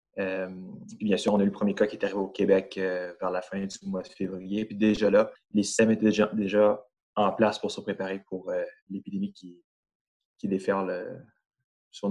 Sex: male